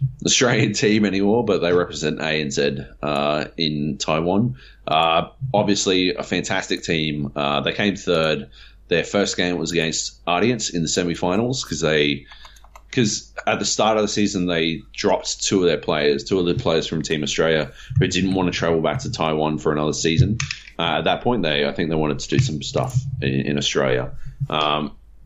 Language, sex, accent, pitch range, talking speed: English, male, Australian, 70-90 Hz, 190 wpm